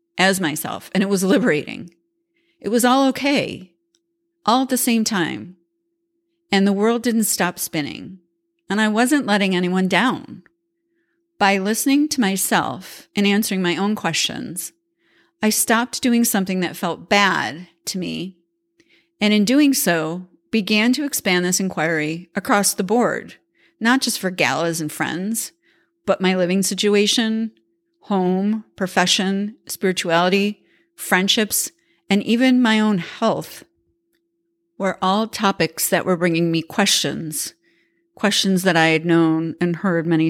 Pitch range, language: 175-250 Hz, English